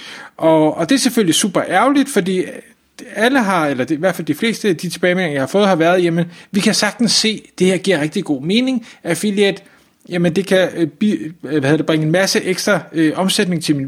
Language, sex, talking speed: Danish, male, 210 wpm